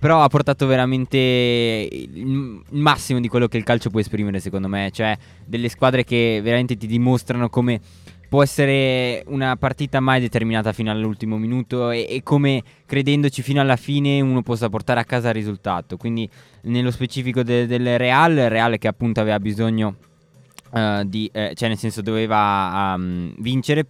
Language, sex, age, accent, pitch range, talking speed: Italian, male, 20-39, native, 105-130 Hz, 170 wpm